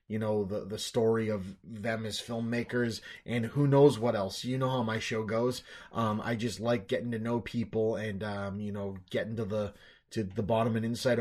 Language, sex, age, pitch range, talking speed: English, male, 30-49, 105-125 Hz, 215 wpm